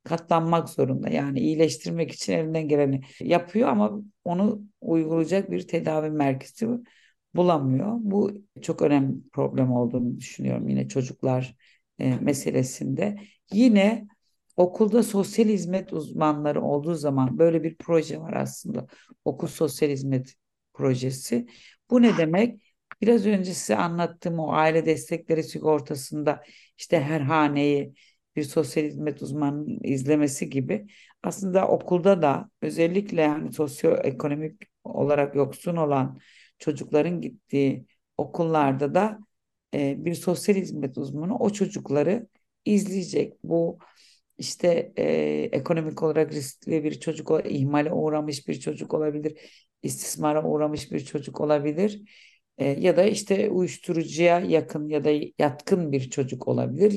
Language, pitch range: Turkish, 145-190 Hz